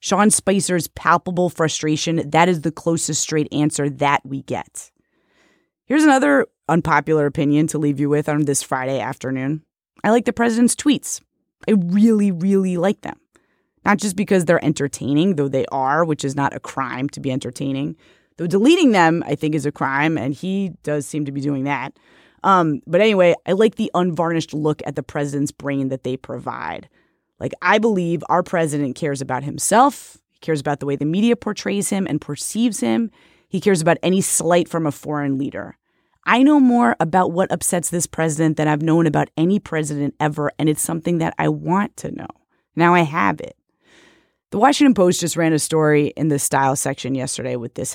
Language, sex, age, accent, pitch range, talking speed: English, female, 20-39, American, 145-185 Hz, 190 wpm